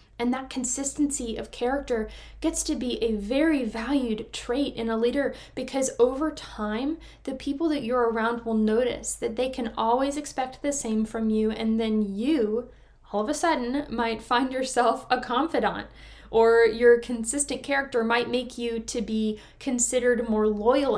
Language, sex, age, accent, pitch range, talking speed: English, female, 10-29, American, 225-265 Hz, 165 wpm